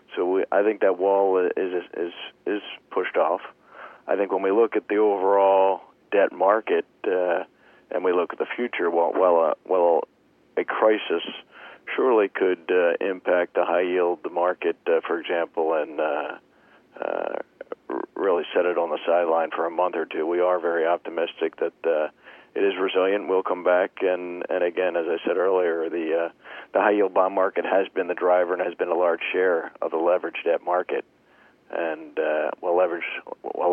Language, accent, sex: English, American, male